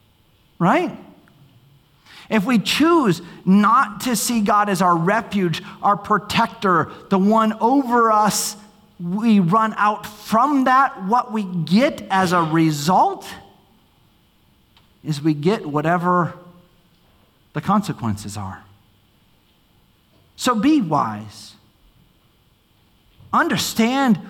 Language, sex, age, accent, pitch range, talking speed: English, male, 40-59, American, 155-225 Hz, 95 wpm